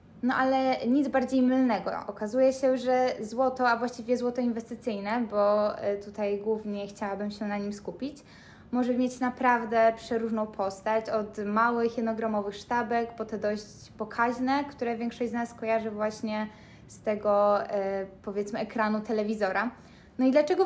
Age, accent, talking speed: 10-29, native, 140 wpm